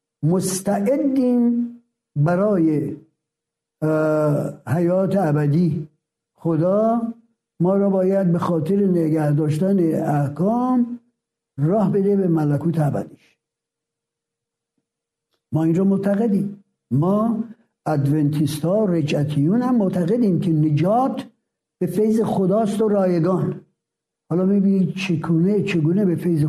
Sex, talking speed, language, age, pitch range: male, 90 wpm, Persian, 60-79, 165-225 Hz